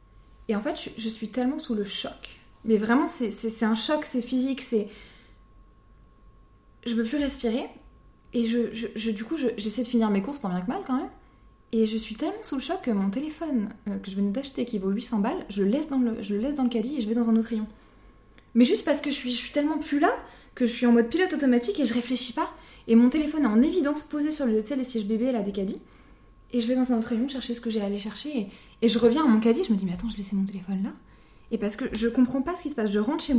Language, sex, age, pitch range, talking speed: French, female, 20-39, 215-265 Hz, 290 wpm